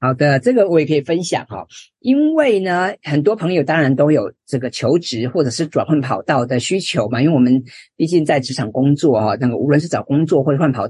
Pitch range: 130-175 Hz